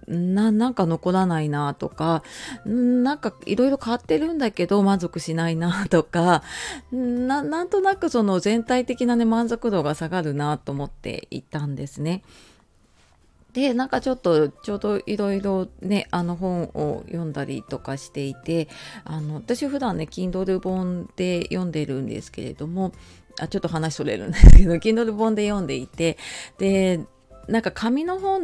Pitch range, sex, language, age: 155-230 Hz, female, Japanese, 30-49